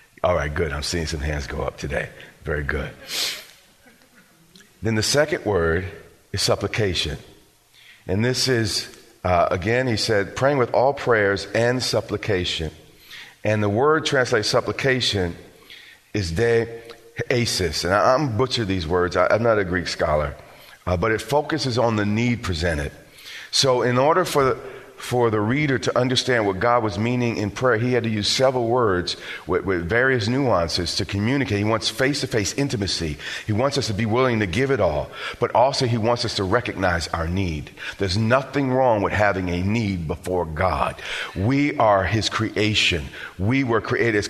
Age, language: 40-59, English